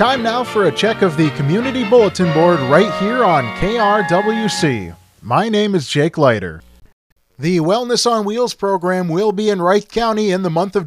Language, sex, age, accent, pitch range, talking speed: English, male, 30-49, American, 170-225 Hz, 180 wpm